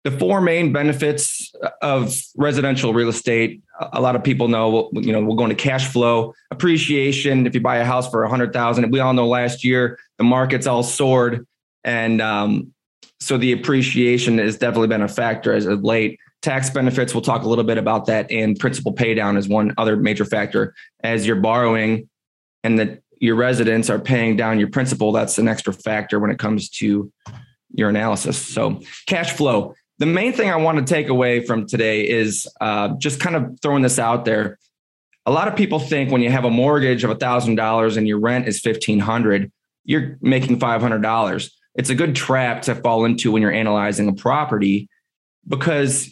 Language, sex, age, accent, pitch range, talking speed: English, male, 20-39, American, 110-130 Hz, 190 wpm